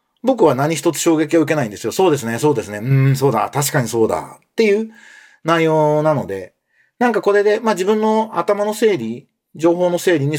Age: 40-59